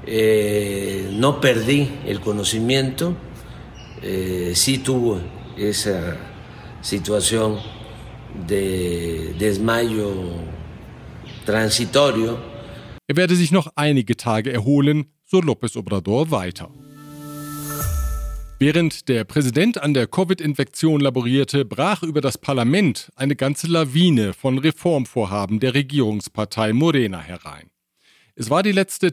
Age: 50-69